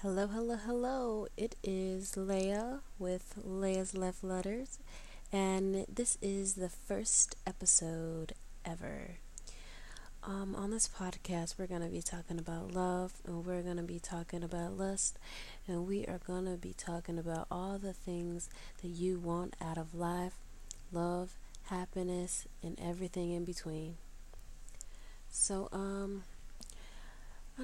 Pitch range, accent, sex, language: 165-195 Hz, American, female, English